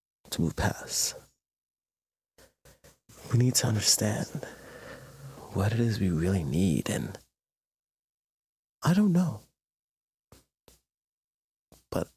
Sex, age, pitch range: male, 30-49, 90-115 Hz